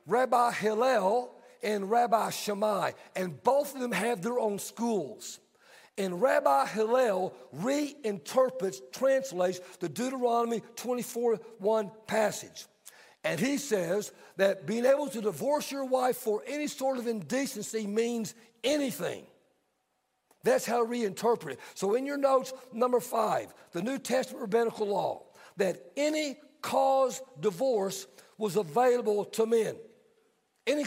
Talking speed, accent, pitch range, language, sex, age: 120 wpm, American, 215-265 Hz, English, male, 60-79